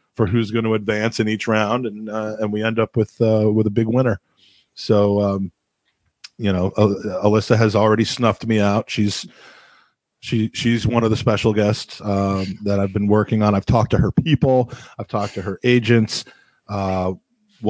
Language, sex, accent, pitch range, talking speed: English, male, American, 105-120 Hz, 190 wpm